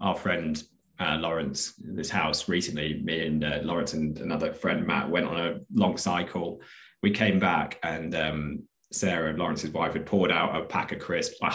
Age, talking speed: 20-39, 195 wpm